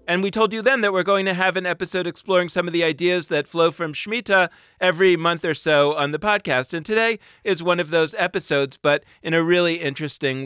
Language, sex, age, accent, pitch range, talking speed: English, male, 40-59, American, 155-195 Hz, 230 wpm